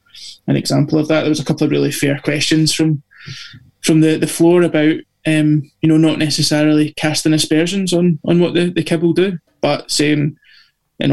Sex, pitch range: male, 150-160 Hz